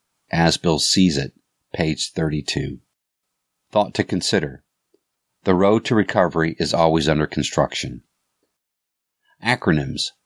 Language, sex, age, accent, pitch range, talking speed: English, male, 50-69, American, 75-95 Hz, 105 wpm